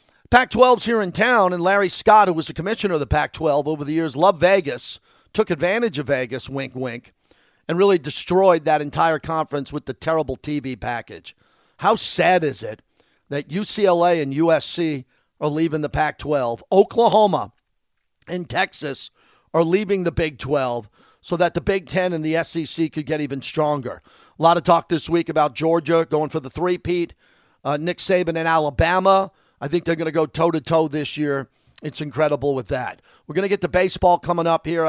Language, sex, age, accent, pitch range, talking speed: English, male, 40-59, American, 150-180 Hz, 185 wpm